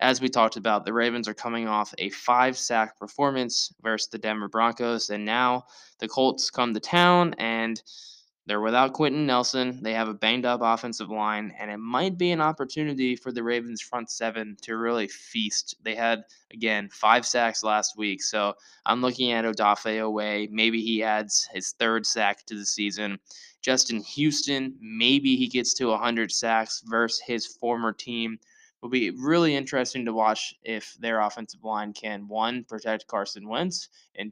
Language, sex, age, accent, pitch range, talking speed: English, male, 10-29, American, 110-130 Hz, 170 wpm